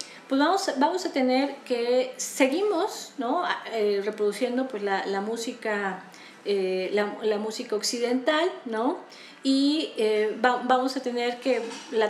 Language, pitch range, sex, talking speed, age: Spanish, 220-280 Hz, female, 140 wpm, 30-49